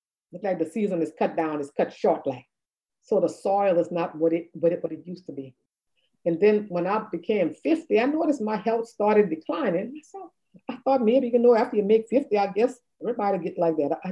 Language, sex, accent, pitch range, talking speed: English, female, American, 175-255 Hz, 230 wpm